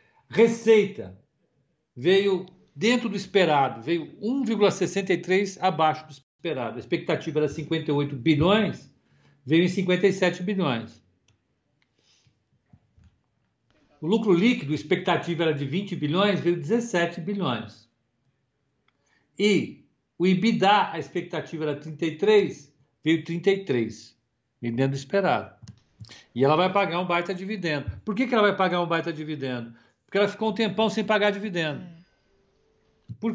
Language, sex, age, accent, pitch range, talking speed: Portuguese, male, 60-79, Brazilian, 140-195 Hz, 130 wpm